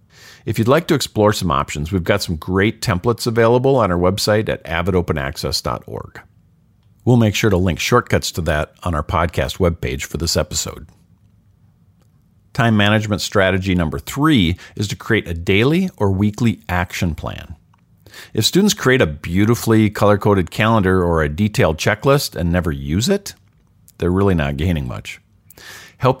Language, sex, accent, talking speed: English, male, American, 155 wpm